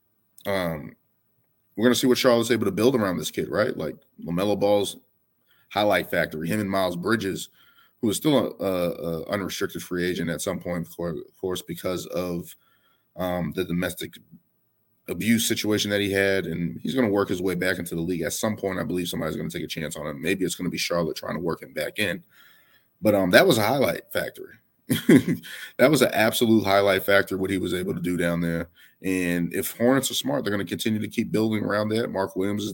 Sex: male